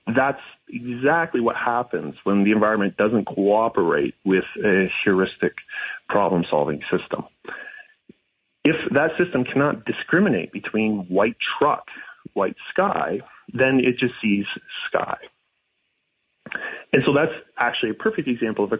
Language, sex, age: English, male, 30-49